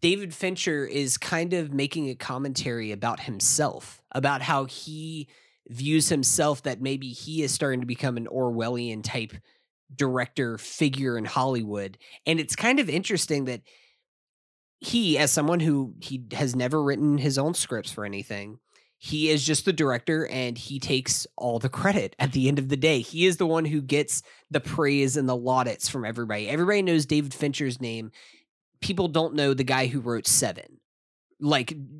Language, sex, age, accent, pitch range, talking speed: English, male, 20-39, American, 125-155 Hz, 170 wpm